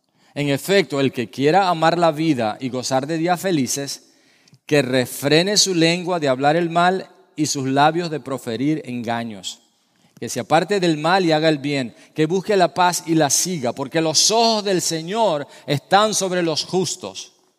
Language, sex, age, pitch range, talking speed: English, male, 40-59, 125-170 Hz, 175 wpm